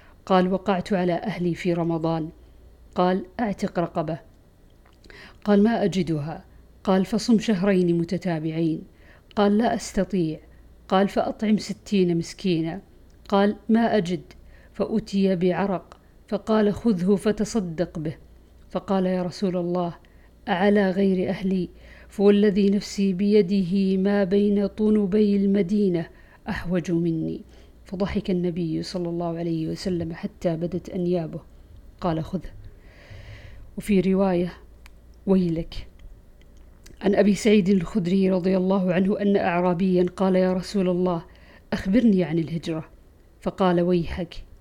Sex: female